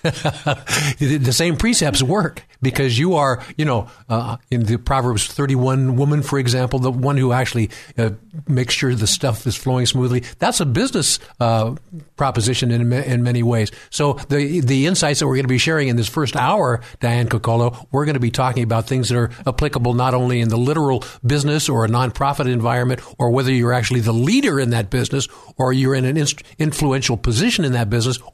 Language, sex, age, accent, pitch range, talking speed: English, male, 50-69, American, 120-140 Hz, 195 wpm